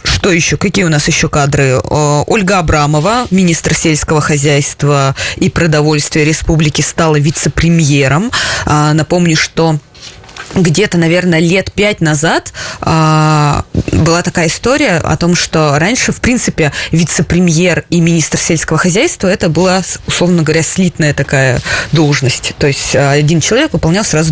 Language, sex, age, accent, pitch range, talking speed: Russian, female, 20-39, native, 155-190 Hz, 125 wpm